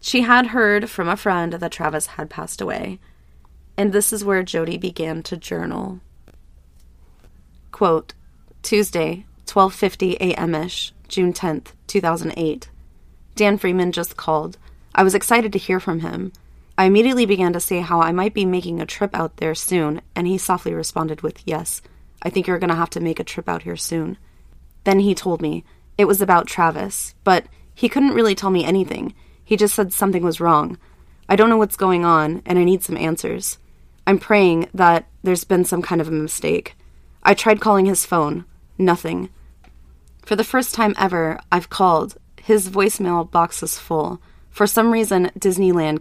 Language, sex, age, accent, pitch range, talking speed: English, female, 20-39, American, 155-195 Hz, 175 wpm